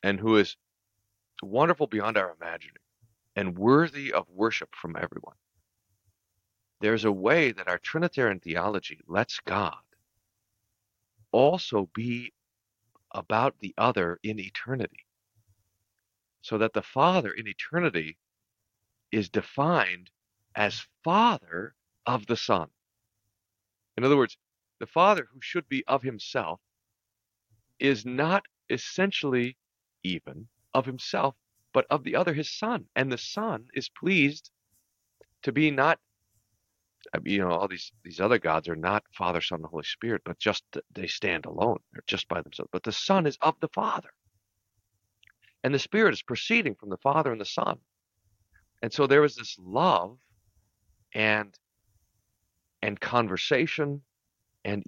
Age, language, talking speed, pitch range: 50-69, English, 135 wpm, 100-125 Hz